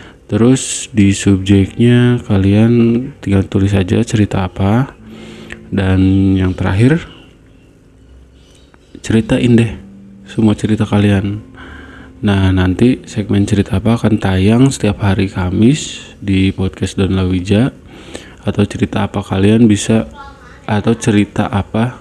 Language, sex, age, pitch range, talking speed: Indonesian, male, 20-39, 95-110 Hz, 110 wpm